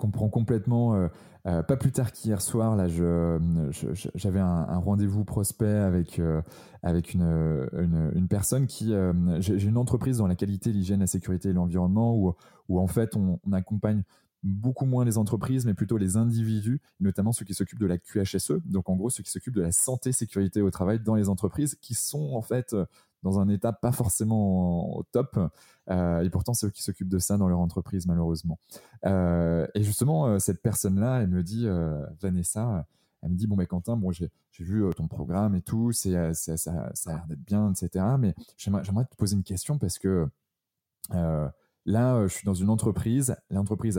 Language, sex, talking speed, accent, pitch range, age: French, male, 205 wpm, French, 95-115 Hz, 20-39